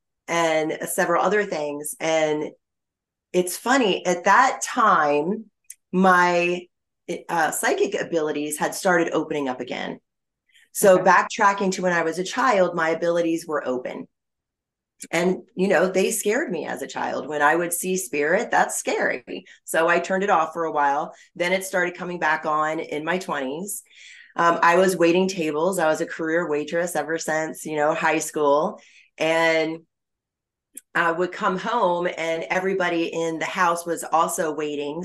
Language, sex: English, female